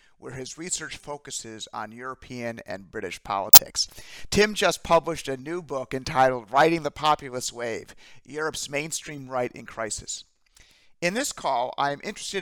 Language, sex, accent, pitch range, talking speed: English, male, American, 120-155 Hz, 145 wpm